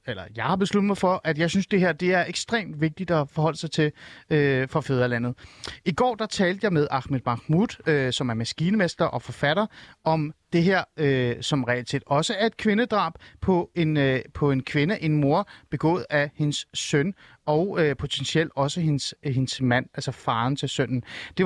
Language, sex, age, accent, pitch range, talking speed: Danish, male, 30-49, native, 135-175 Hz, 195 wpm